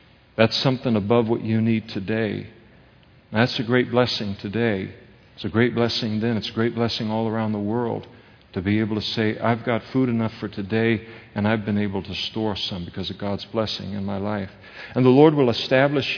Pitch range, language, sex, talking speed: 105-125 Hz, English, male, 205 wpm